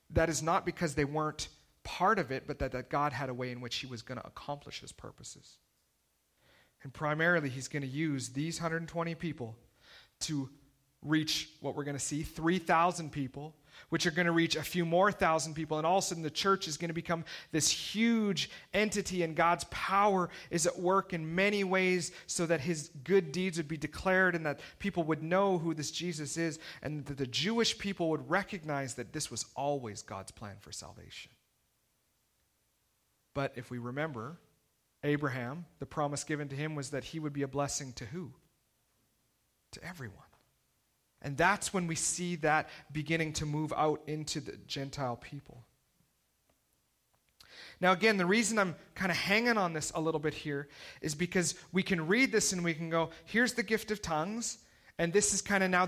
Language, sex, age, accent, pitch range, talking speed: English, male, 40-59, American, 145-180 Hz, 190 wpm